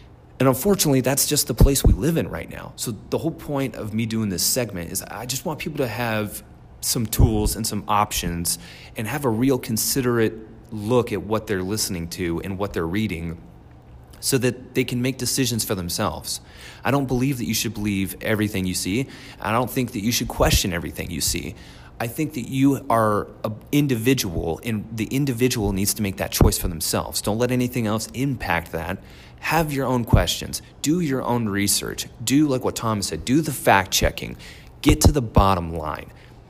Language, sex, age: English, male, 30-49